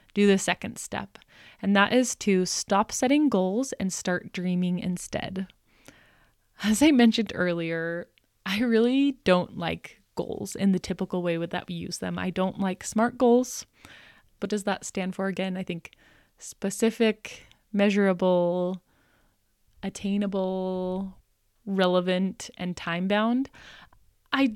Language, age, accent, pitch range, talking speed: English, 20-39, American, 185-230 Hz, 130 wpm